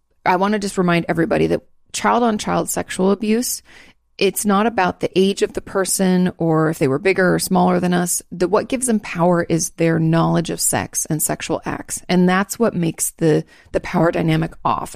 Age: 30-49